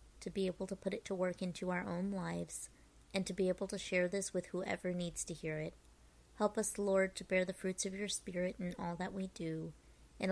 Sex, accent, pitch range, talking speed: female, American, 160-190 Hz, 240 wpm